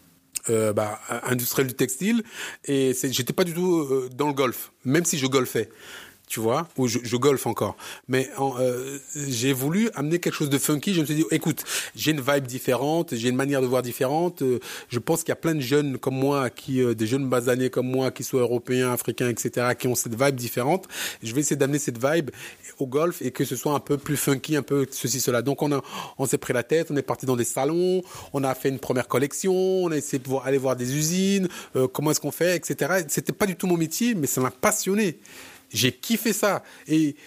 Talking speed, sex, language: 235 wpm, male, French